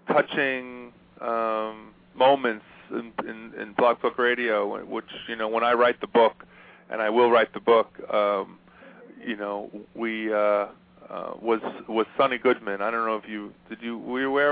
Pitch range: 110-135 Hz